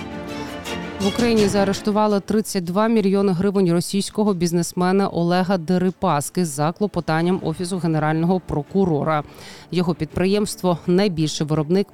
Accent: native